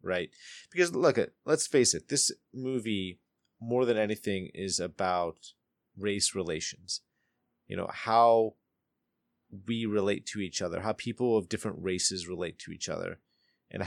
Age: 30-49